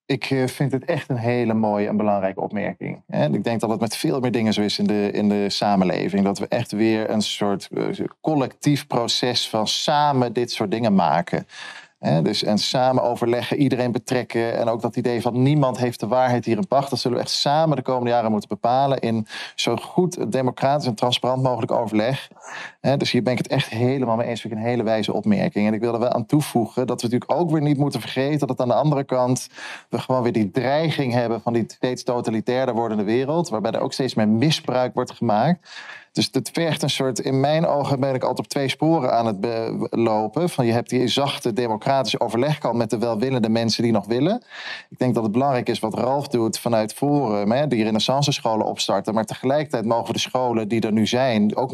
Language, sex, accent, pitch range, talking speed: Dutch, male, Dutch, 115-135 Hz, 215 wpm